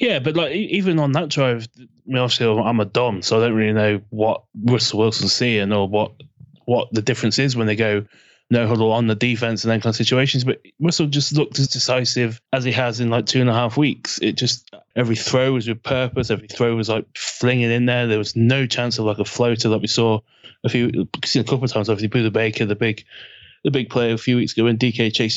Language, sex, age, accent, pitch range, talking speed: English, male, 20-39, British, 110-125 Hz, 240 wpm